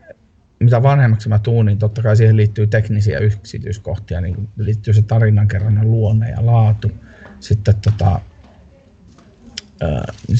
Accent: native